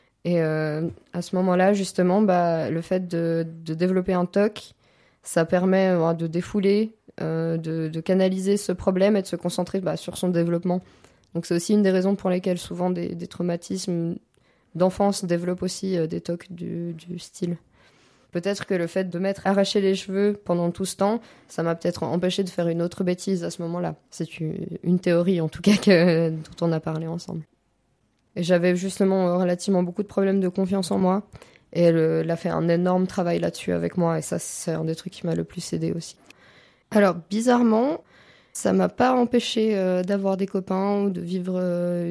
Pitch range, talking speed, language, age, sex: 170-195 Hz, 200 wpm, French, 20-39, female